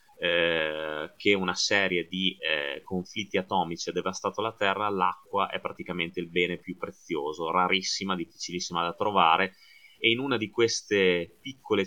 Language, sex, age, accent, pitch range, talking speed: Italian, male, 30-49, native, 90-110 Hz, 140 wpm